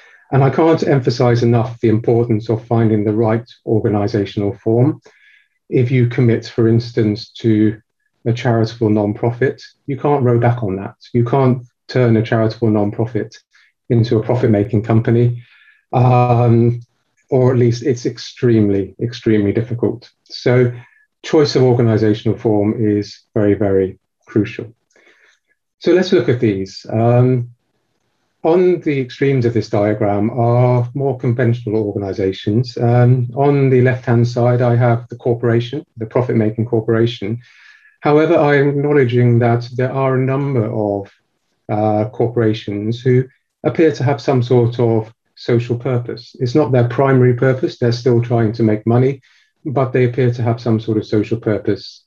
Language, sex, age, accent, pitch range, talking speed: English, male, 40-59, British, 110-130 Hz, 140 wpm